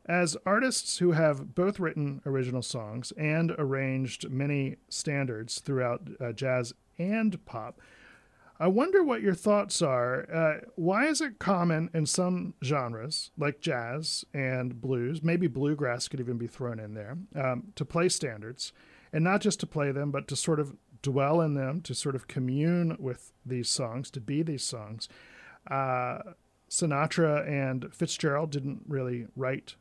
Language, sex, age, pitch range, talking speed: English, male, 40-59, 130-175 Hz, 155 wpm